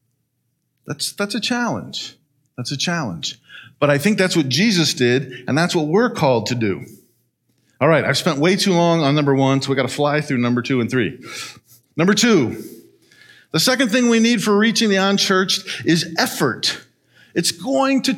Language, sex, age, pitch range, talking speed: English, male, 50-69, 140-205 Hz, 190 wpm